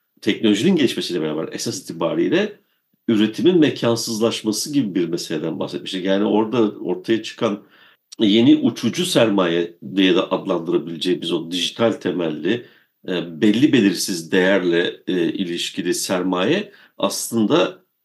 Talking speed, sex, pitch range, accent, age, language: 100 wpm, male, 105-140 Hz, native, 50-69, Turkish